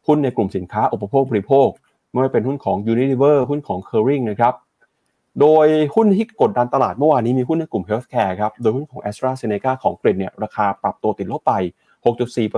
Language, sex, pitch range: Thai, male, 105-135 Hz